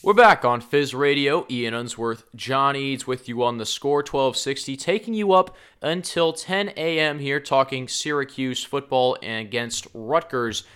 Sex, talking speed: male, 150 wpm